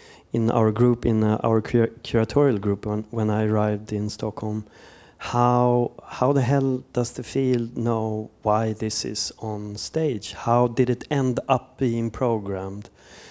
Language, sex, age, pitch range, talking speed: Finnish, male, 30-49, 110-125 Hz, 145 wpm